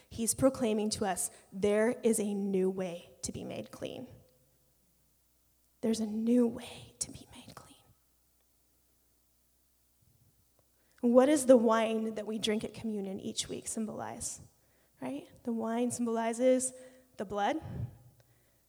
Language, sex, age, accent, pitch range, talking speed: English, female, 20-39, American, 200-240 Hz, 125 wpm